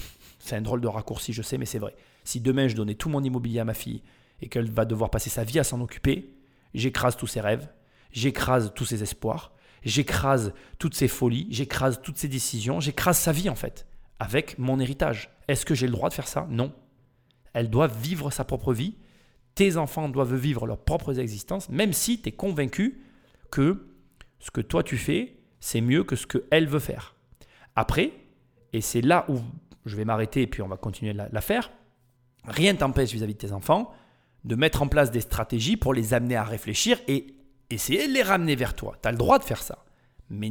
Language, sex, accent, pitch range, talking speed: French, male, French, 115-155 Hz, 210 wpm